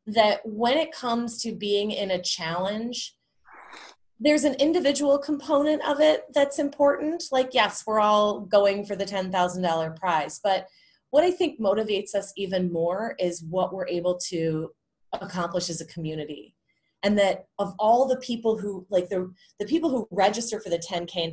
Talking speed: 170 wpm